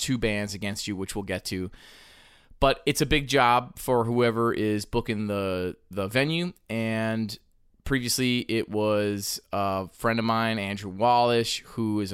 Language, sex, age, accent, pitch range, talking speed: English, male, 20-39, American, 100-125 Hz, 160 wpm